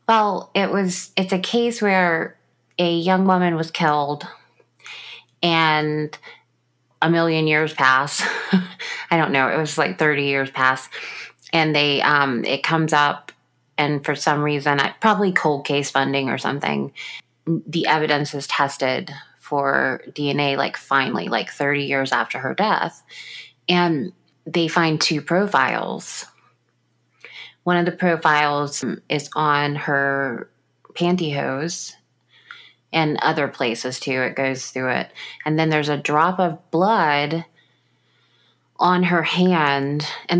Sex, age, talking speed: female, 30-49, 130 wpm